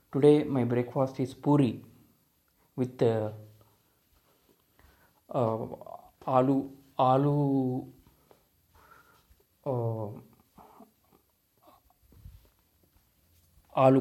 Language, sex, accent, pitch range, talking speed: Telugu, male, native, 115-135 Hz, 50 wpm